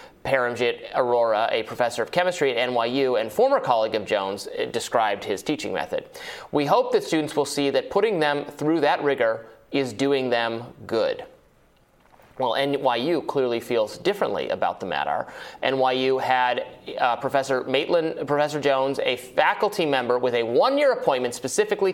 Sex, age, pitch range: male, 30-49, 125-180 Hz